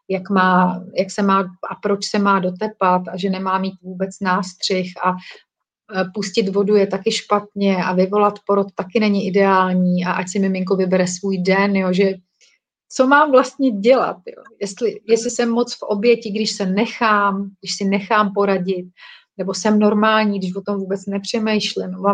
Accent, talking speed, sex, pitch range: native, 165 wpm, female, 195-225 Hz